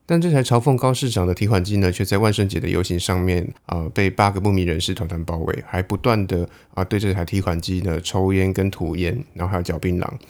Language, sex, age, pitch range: Chinese, male, 20-39, 90-120 Hz